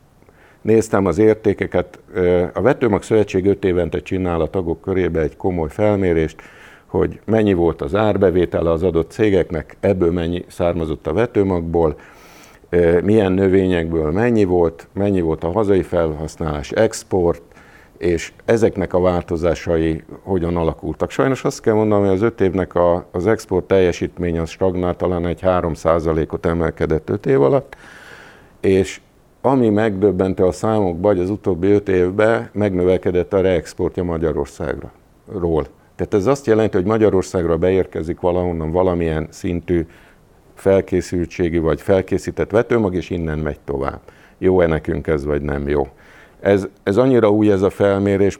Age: 50-69